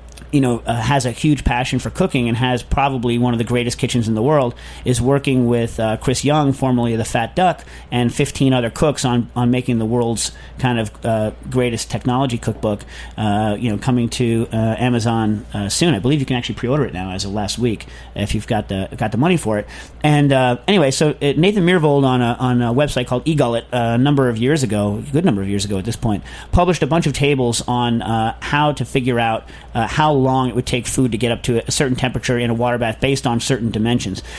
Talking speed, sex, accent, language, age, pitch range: 240 wpm, male, American, English, 40-59, 120-140 Hz